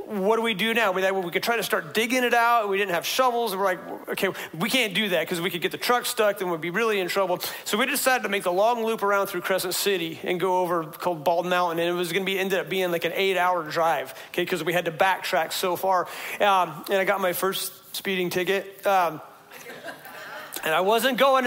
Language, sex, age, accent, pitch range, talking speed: English, male, 40-59, American, 180-230 Hz, 255 wpm